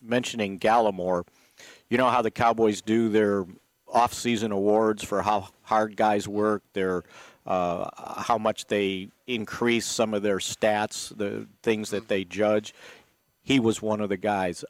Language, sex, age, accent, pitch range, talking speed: English, male, 50-69, American, 95-110 Hz, 150 wpm